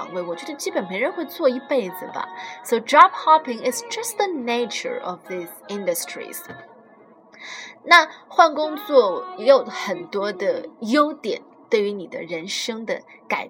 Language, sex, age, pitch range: Chinese, female, 20-39, 200-310 Hz